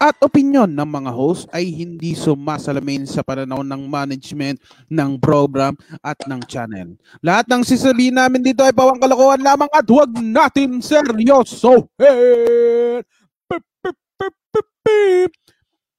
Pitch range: 220-310 Hz